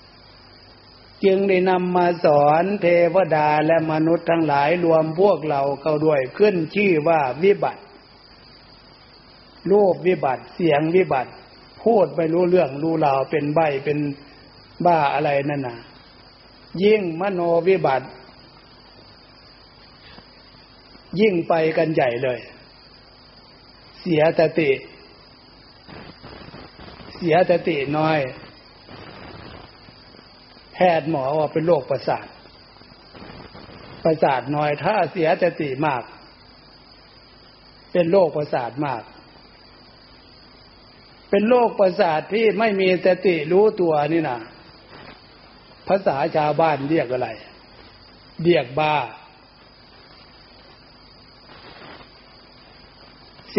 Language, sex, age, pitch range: Thai, male, 60-79, 150-185 Hz